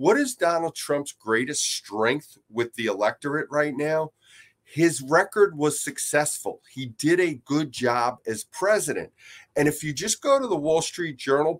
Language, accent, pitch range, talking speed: English, American, 120-165 Hz, 165 wpm